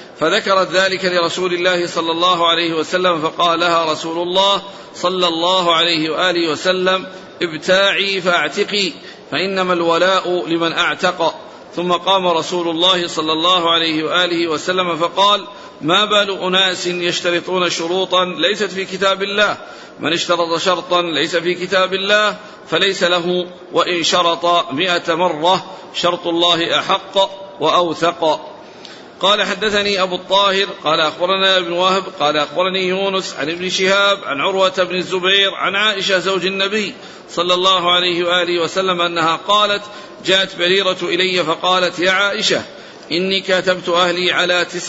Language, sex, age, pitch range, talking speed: Arabic, male, 50-69, 170-190 Hz, 130 wpm